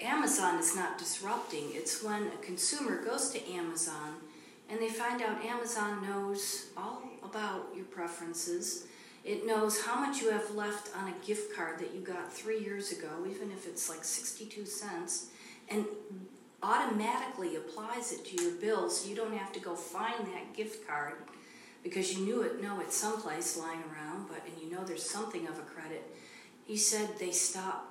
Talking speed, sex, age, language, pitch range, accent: 180 wpm, female, 40-59, English, 170-220 Hz, American